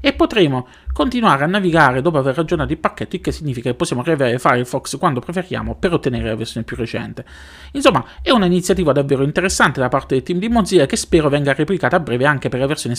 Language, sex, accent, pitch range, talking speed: Italian, male, native, 125-185 Hz, 215 wpm